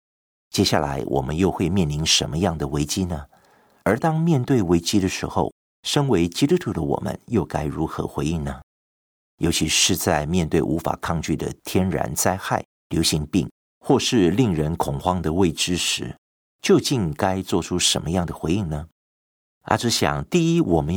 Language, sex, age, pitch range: Chinese, male, 50-69, 75-100 Hz